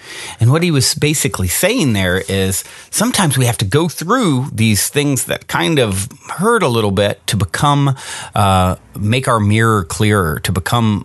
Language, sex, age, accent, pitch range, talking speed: English, male, 40-59, American, 100-135 Hz, 175 wpm